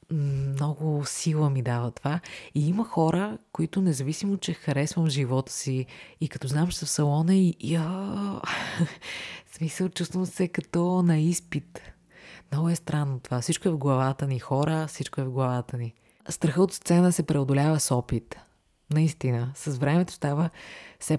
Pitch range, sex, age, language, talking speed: 130-165 Hz, female, 30-49, Bulgarian, 160 wpm